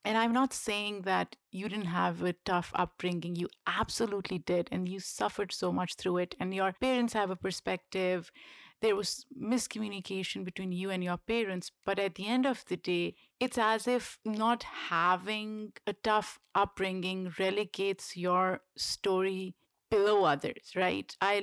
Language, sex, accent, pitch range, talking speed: English, female, Indian, 185-225 Hz, 160 wpm